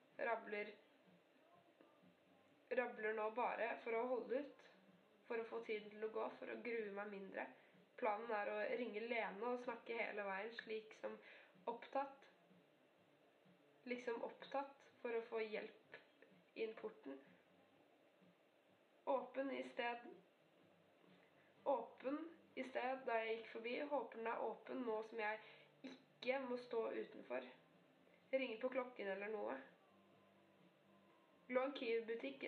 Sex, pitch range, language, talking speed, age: female, 220-255 Hz, English, 125 wpm, 20-39